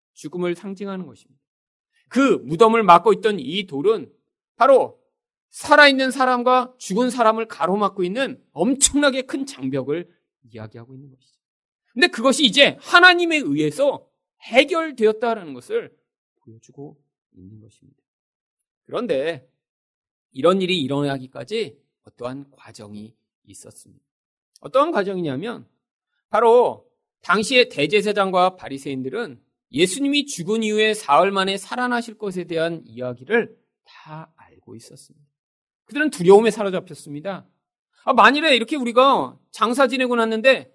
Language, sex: Korean, male